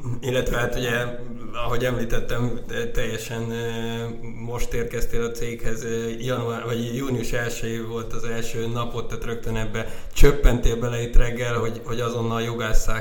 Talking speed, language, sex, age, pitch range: 145 wpm, Hungarian, male, 20-39, 110-120 Hz